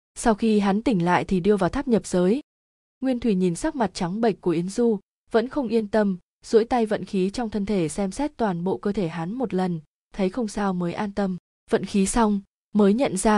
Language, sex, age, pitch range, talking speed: Vietnamese, female, 20-39, 185-225 Hz, 240 wpm